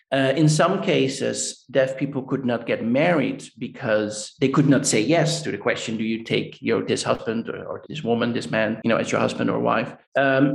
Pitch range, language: 130-170 Hz, English